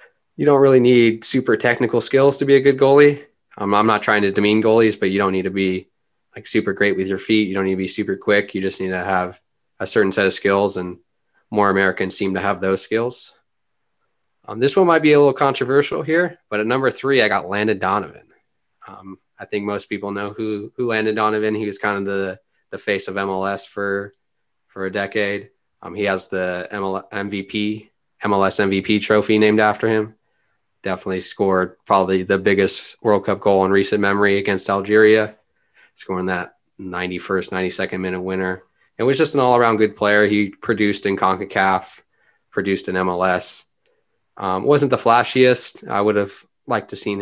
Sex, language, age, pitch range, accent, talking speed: male, English, 20-39, 95-110 Hz, American, 190 wpm